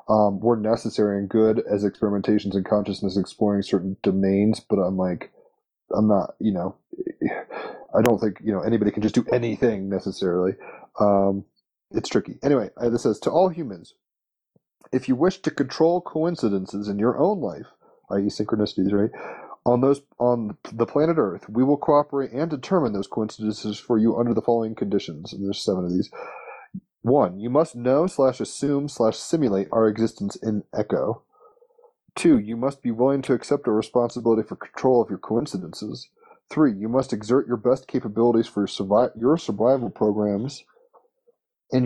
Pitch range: 105-135 Hz